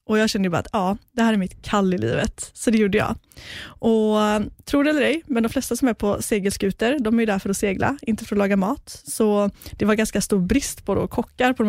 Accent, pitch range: native, 195-230 Hz